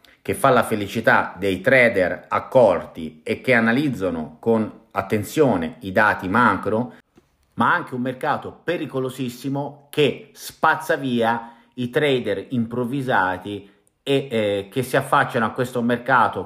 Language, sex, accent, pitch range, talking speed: Italian, male, native, 105-130 Hz, 125 wpm